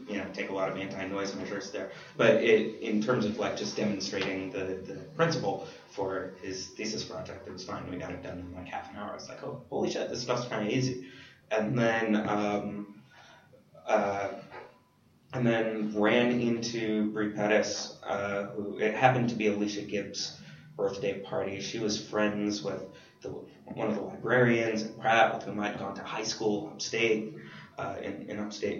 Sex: male